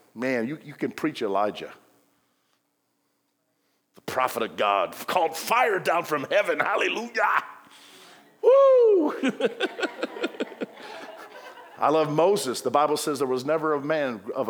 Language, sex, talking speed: English, male, 120 wpm